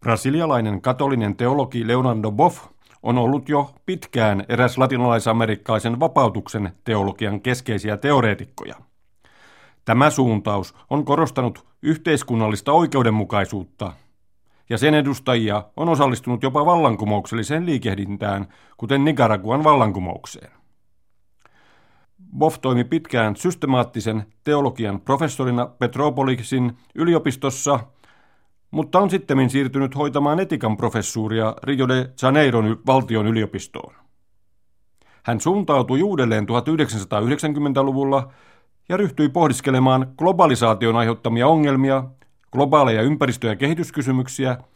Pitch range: 110-145 Hz